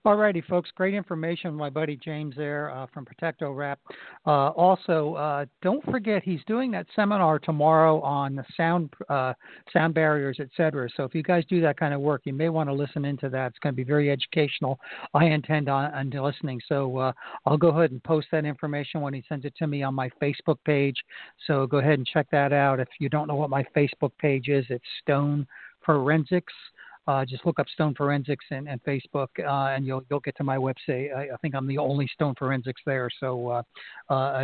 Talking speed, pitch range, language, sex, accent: 215 wpm, 135-160 Hz, English, male, American